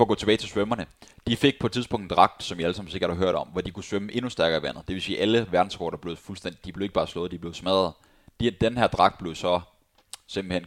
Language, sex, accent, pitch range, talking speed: Danish, male, native, 90-110 Hz, 285 wpm